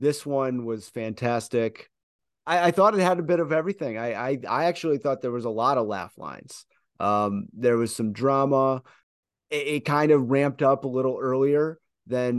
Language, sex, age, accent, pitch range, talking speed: English, male, 30-49, American, 115-140 Hz, 195 wpm